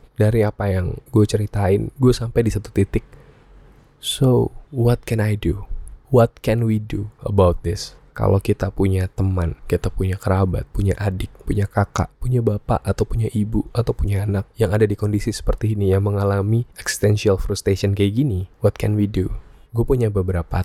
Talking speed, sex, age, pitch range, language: 170 wpm, male, 20-39, 90-105 Hz, Indonesian